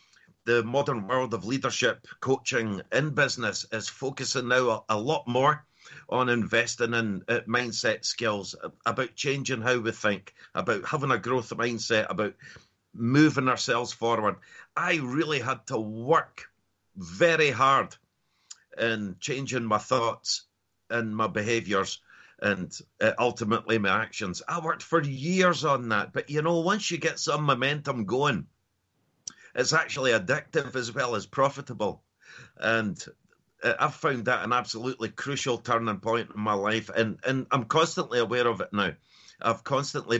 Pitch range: 115-140 Hz